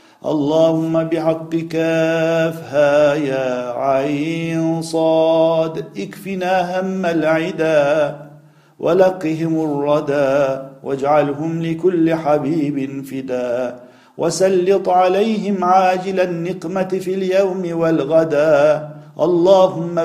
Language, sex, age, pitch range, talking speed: Turkish, male, 50-69, 145-170 Hz, 70 wpm